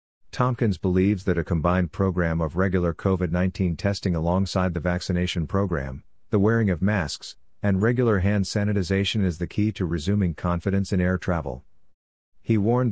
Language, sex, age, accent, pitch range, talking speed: English, male, 50-69, American, 85-100 Hz, 155 wpm